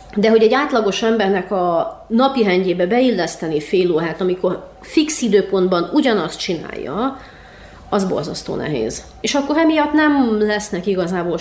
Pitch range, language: 180-250 Hz, Hungarian